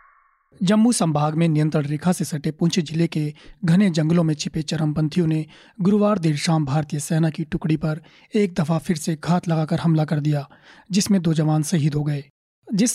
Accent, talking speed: native, 185 wpm